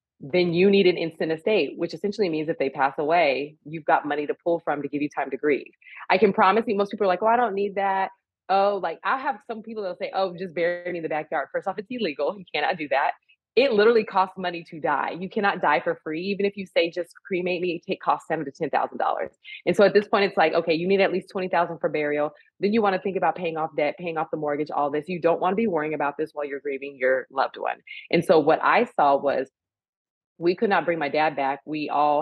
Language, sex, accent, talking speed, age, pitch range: English, female, American, 265 wpm, 20-39, 145-190 Hz